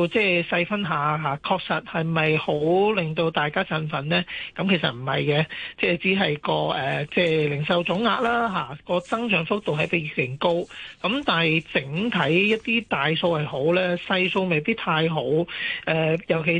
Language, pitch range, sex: Chinese, 155-190 Hz, male